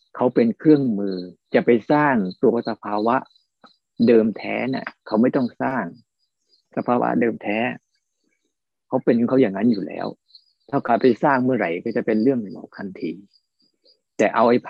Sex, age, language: male, 60-79, Thai